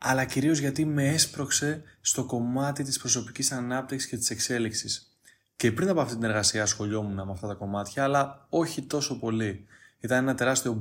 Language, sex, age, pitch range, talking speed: Greek, male, 20-39, 105-130 Hz, 170 wpm